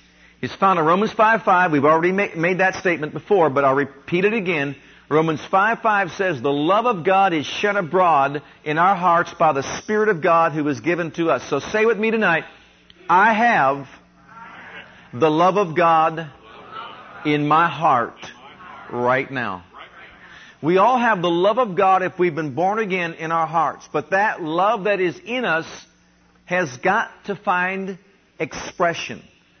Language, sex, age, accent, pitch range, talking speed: English, male, 50-69, American, 160-205 Hz, 170 wpm